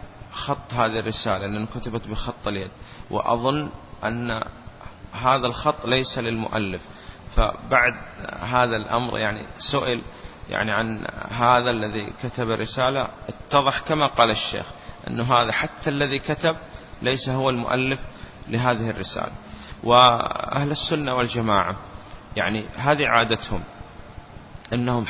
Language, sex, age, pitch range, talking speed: Arabic, male, 30-49, 110-135 Hz, 110 wpm